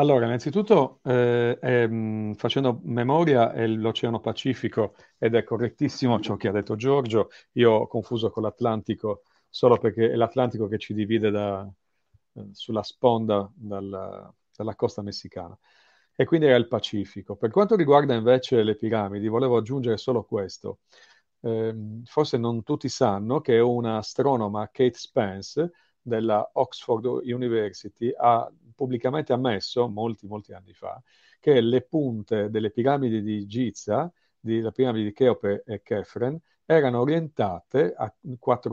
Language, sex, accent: Italian, male, native